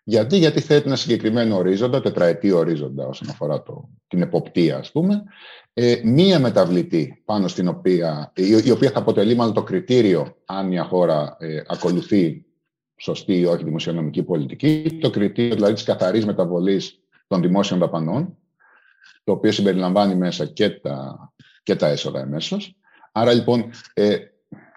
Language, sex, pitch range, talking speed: Greek, male, 95-145 Hz, 145 wpm